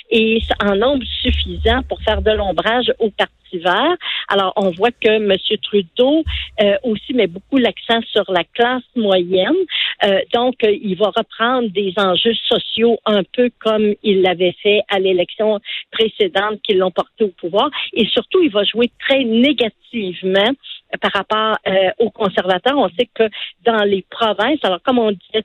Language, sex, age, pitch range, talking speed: French, female, 50-69, 190-230 Hz, 165 wpm